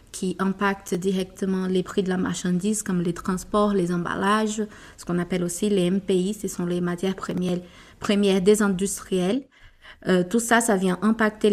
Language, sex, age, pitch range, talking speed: French, female, 30-49, 180-205 Hz, 170 wpm